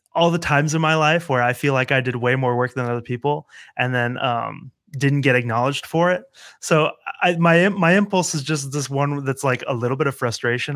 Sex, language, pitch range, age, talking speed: male, English, 120-150 Hz, 30-49, 235 wpm